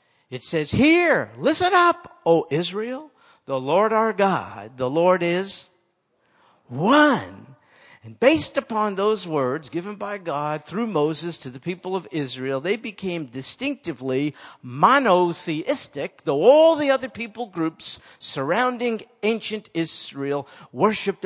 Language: German